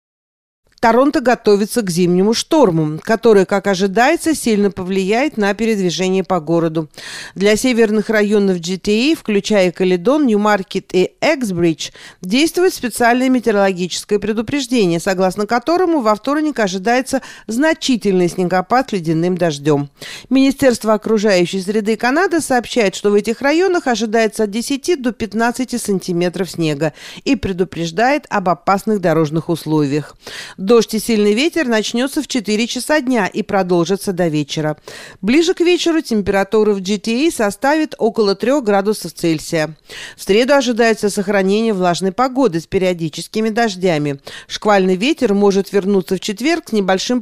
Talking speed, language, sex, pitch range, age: 125 wpm, Russian, female, 185-245 Hz, 50-69